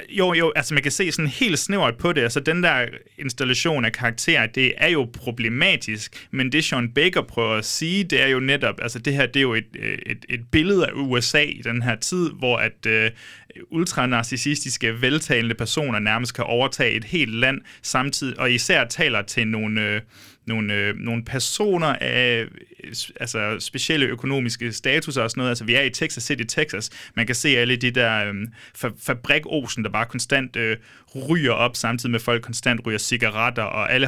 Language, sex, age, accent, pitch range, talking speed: Danish, male, 30-49, native, 115-135 Hz, 190 wpm